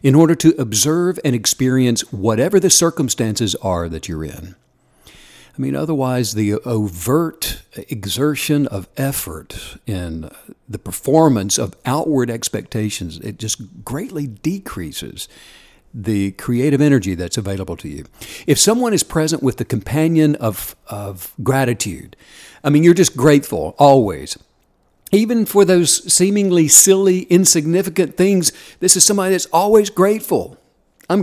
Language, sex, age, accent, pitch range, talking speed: English, male, 60-79, American, 115-180 Hz, 130 wpm